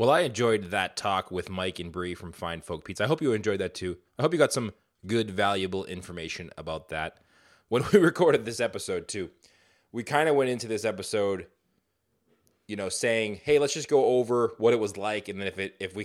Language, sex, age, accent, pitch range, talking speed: English, male, 20-39, American, 95-120 Hz, 225 wpm